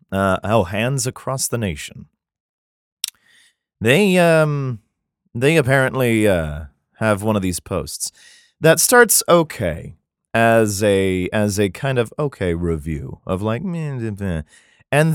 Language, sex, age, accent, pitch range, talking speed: English, male, 30-49, American, 85-135 Hz, 120 wpm